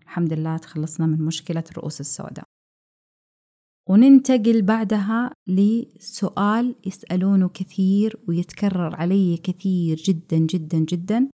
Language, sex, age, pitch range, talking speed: Arabic, female, 20-39, 185-250 Hz, 95 wpm